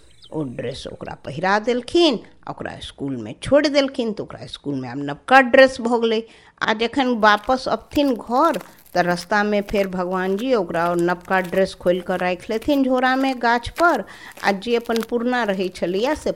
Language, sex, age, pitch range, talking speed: Hindi, female, 50-69, 155-250 Hz, 150 wpm